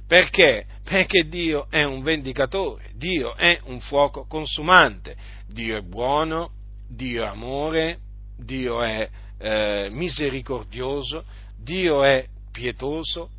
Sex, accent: male, native